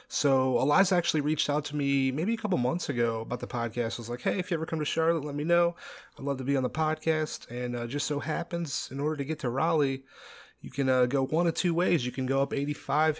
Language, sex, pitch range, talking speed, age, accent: English, male, 135-165 Hz, 275 wpm, 30-49, American